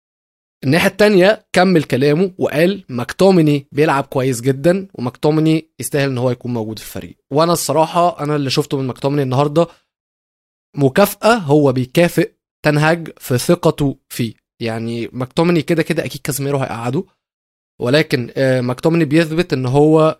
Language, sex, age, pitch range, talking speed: Arabic, male, 20-39, 135-180 Hz, 130 wpm